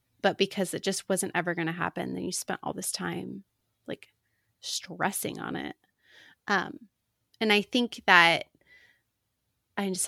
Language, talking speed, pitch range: English, 155 wpm, 170-205 Hz